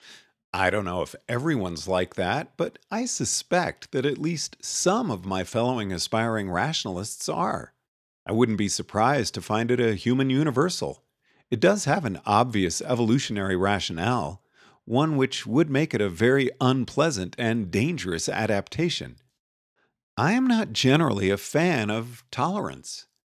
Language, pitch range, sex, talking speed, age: English, 105-135 Hz, male, 145 wpm, 50-69